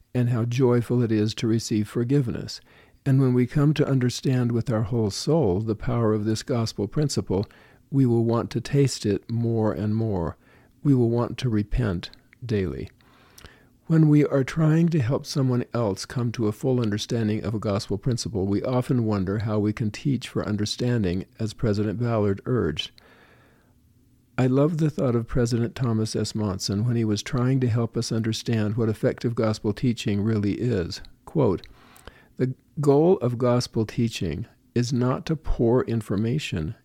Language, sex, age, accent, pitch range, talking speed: English, male, 50-69, American, 105-125 Hz, 170 wpm